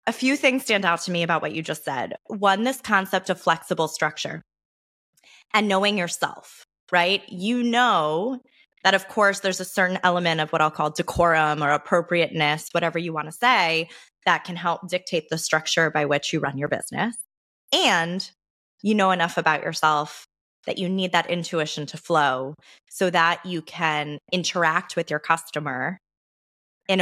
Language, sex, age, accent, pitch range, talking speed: English, female, 20-39, American, 155-190 Hz, 170 wpm